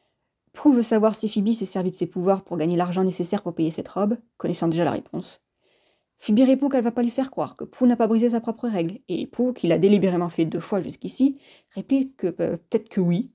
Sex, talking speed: female, 240 wpm